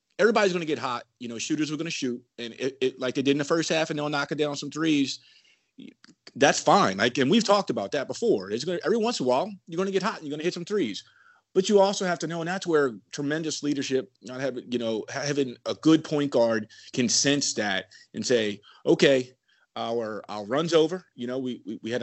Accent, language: American, English